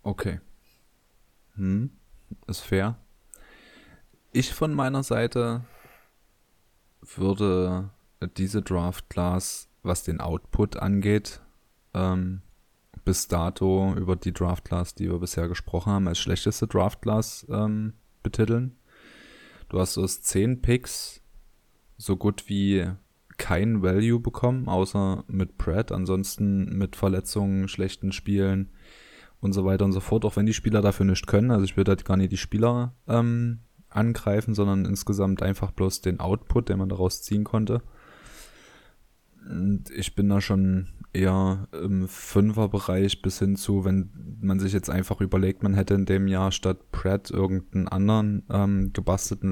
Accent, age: German, 20-39